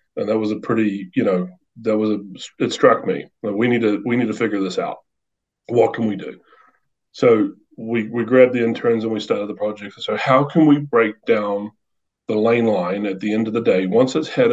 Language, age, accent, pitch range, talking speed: English, 30-49, American, 95-125 Hz, 235 wpm